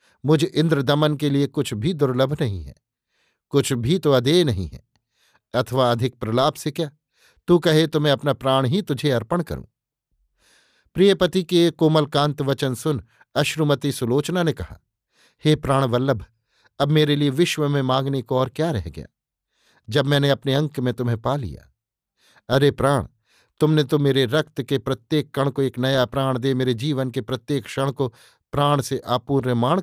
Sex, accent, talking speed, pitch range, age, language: male, native, 130 wpm, 125-150 Hz, 50-69, Hindi